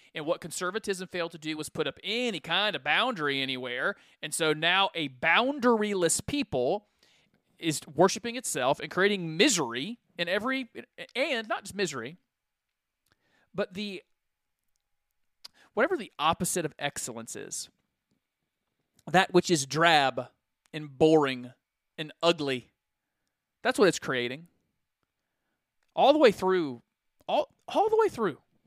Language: English